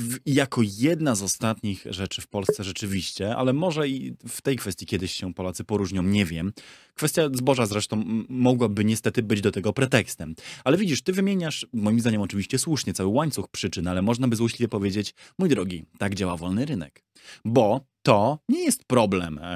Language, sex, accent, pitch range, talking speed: Polish, male, native, 95-130 Hz, 170 wpm